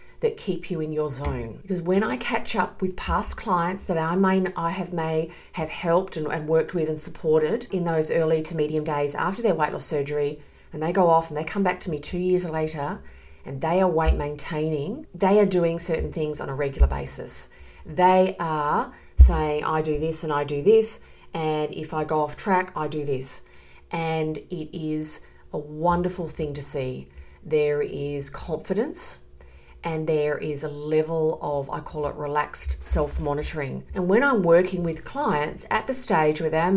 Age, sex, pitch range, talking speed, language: 40-59, female, 145-175 Hz, 195 wpm, English